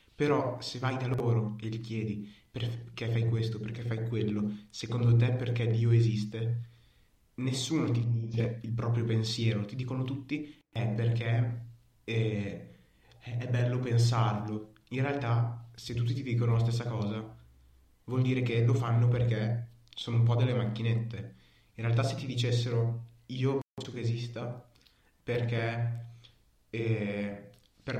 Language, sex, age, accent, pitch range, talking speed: Italian, male, 20-39, native, 110-125 Hz, 140 wpm